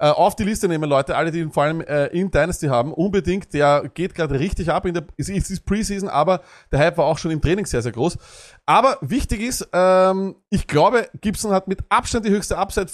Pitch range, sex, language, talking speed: 145-195 Hz, male, German, 225 wpm